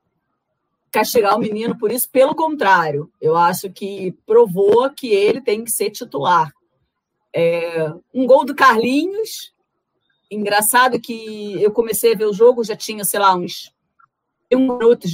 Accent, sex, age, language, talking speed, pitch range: Brazilian, female, 40-59, Portuguese, 145 wpm, 195-265 Hz